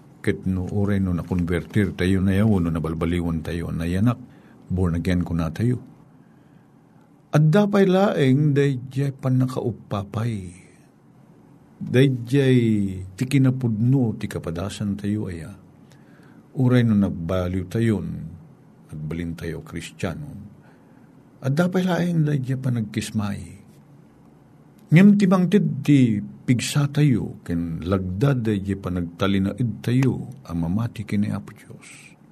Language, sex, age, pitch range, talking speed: Filipino, male, 50-69, 90-135 Hz, 105 wpm